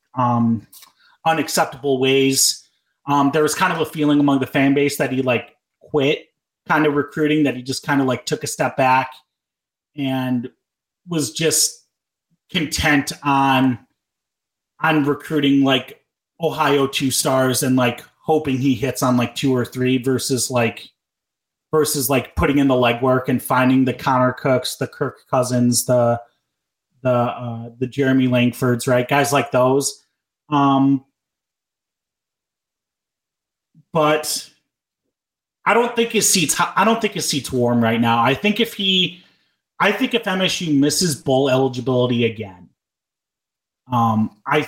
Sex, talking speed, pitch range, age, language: male, 145 wpm, 125-155 Hz, 30-49, English